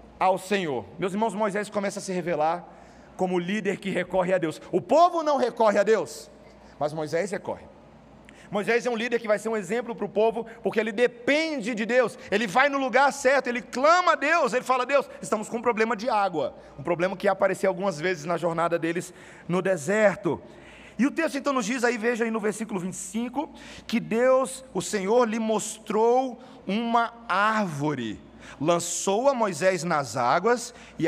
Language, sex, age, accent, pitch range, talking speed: Portuguese, male, 40-59, Brazilian, 185-240 Hz, 190 wpm